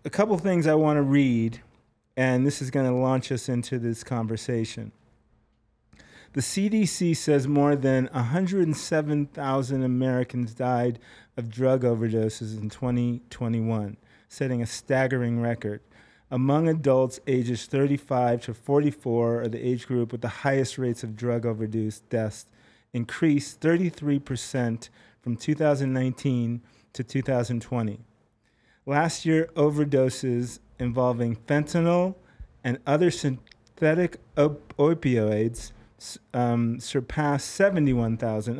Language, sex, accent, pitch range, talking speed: English, male, American, 115-145 Hz, 105 wpm